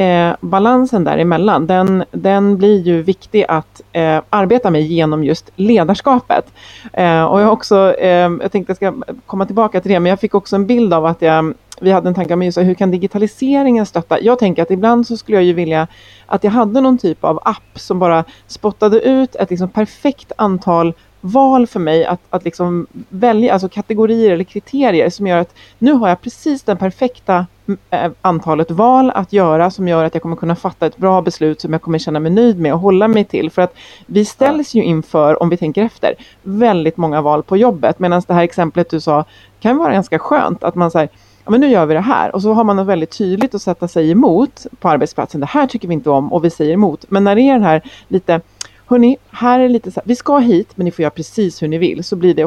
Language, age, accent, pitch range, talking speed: Swedish, 30-49, native, 170-220 Hz, 225 wpm